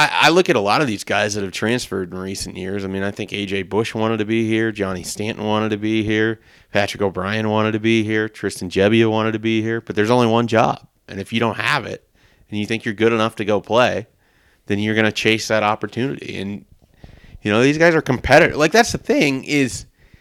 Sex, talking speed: male, 240 wpm